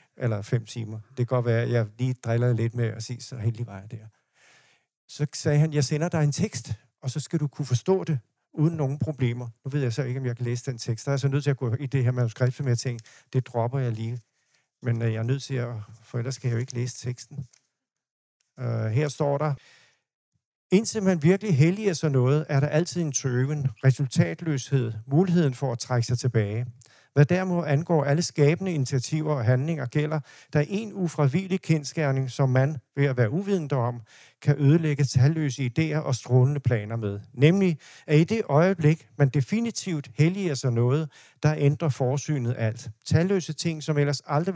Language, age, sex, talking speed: Danish, 50-69, male, 200 wpm